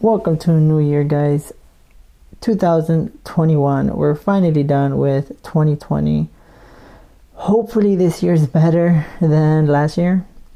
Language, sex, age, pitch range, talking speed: English, male, 20-39, 150-180 Hz, 125 wpm